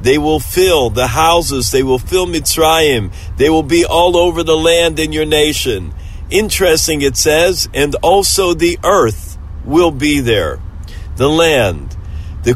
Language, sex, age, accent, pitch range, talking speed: English, male, 50-69, American, 100-165 Hz, 155 wpm